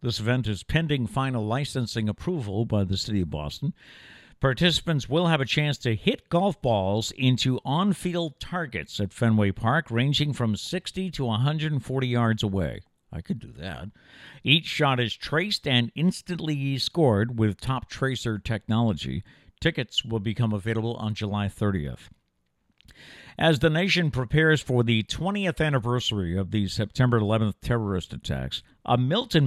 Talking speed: 145 wpm